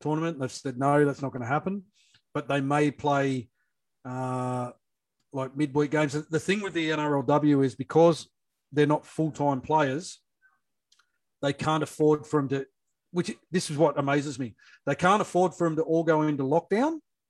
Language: English